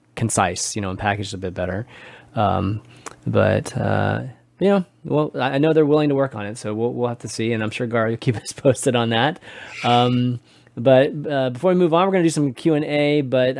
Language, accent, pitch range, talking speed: English, American, 115-150 Hz, 230 wpm